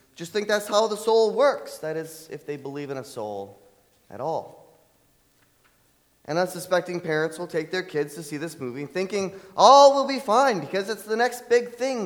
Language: English